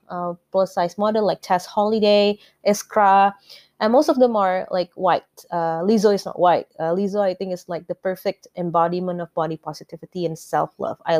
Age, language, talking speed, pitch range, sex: 20-39, English, 195 wpm, 180-230 Hz, female